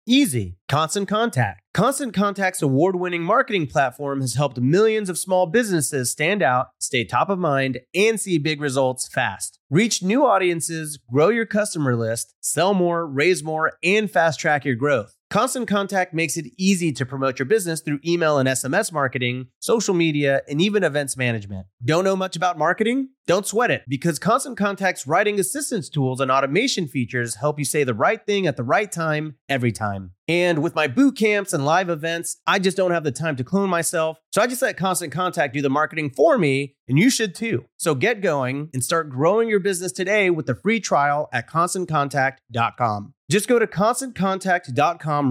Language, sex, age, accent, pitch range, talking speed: English, male, 30-49, American, 135-195 Hz, 185 wpm